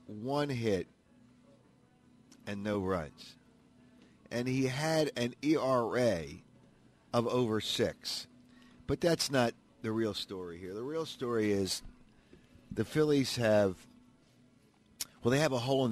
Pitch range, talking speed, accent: 95-125 Hz, 125 wpm, American